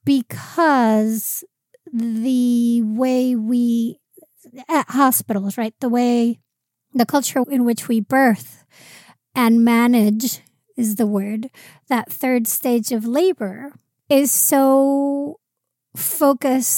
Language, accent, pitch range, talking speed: English, American, 225-275 Hz, 100 wpm